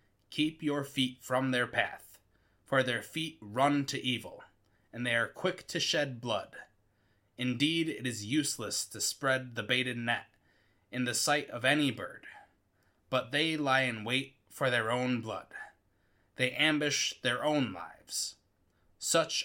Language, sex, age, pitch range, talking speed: English, male, 20-39, 105-135 Hz, 150 wpm